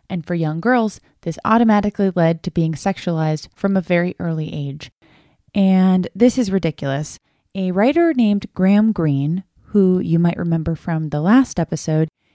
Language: English